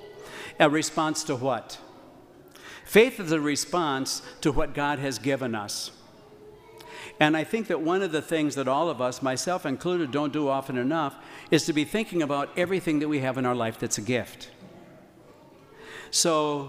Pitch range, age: 130-170 Hz, 60-79